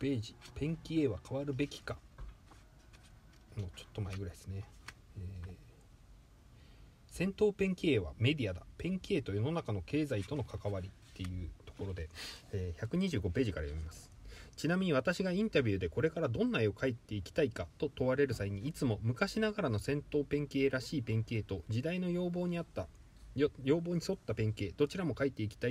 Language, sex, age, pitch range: Japanese, male, 30-49, 105-160 Hz